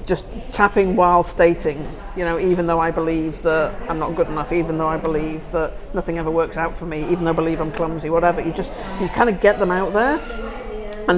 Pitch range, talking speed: 175-210 Hz, 230 wpm